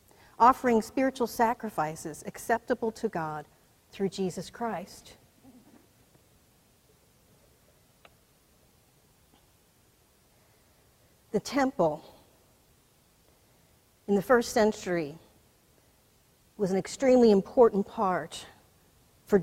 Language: English